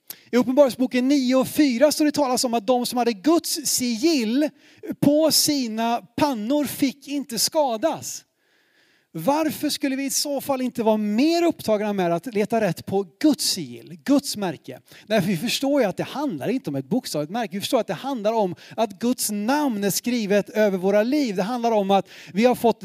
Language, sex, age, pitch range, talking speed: Swedish, male, 30-49, 205-280 Hz, 195 wpm